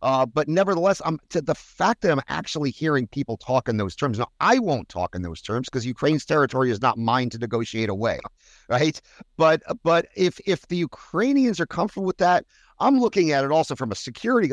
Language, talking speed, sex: English, 210 wpm, male